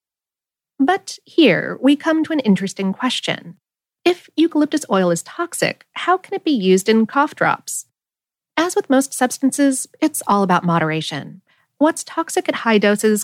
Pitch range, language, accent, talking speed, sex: 180-280 Hz, English, American, 155 wpm, female